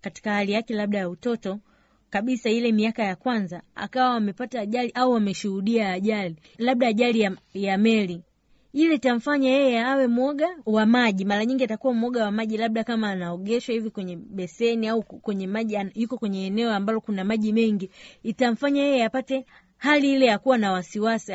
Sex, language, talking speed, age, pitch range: female, Swahili, 170 wpm, 30-49, 205-260 Hz